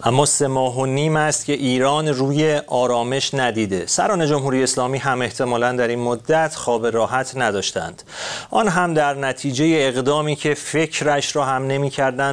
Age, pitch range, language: 40-59, 120-150 Hz, Persian